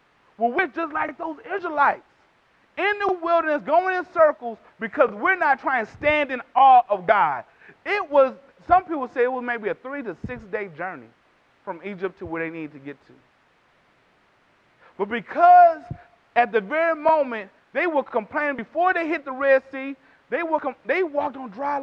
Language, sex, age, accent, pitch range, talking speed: English, male, 30-49, American, 260-345 Hz, 180 wpm